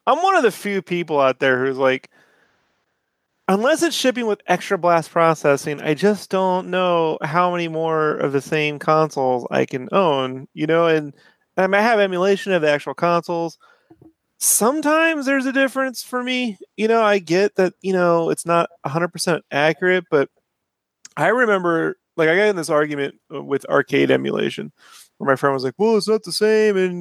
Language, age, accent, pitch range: English, 30-49, American, 150-205 Hz